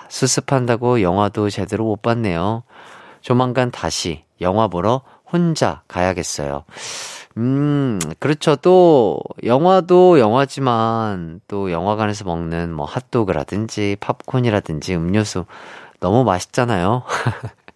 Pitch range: 100-145 Hz